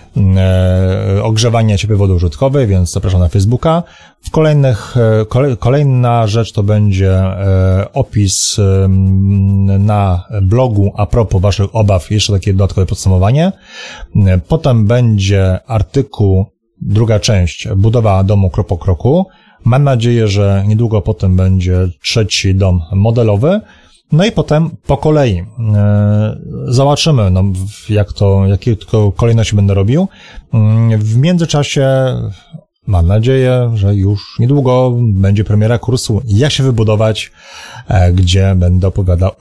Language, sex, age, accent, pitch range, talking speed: Polish, male, 30-49, native, 95-125 Hz, 110 wpm